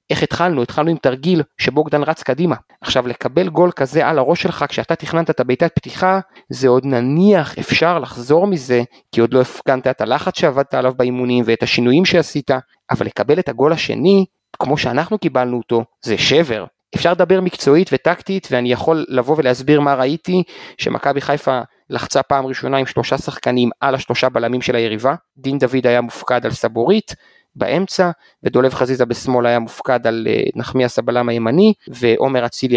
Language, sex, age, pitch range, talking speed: Hebrew, male, 30-49, 125-165 Hz, 165 wpm